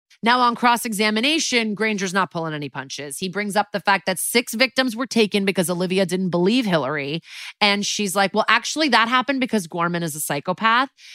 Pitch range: 170-225 Hz